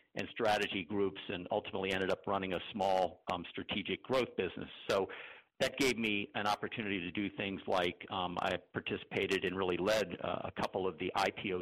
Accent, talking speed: American, 185 wpm